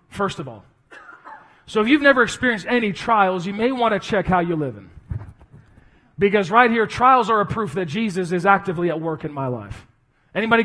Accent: American